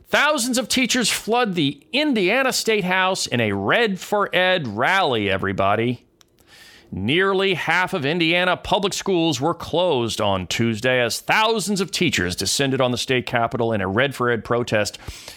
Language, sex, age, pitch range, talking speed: English, male, 40-59, 120-165 Hz, 155 wpm